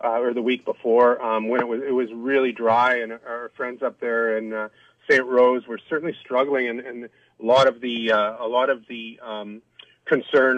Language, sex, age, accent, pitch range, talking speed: English, male, 30-49, American, 110-125 Hz, 215 wpm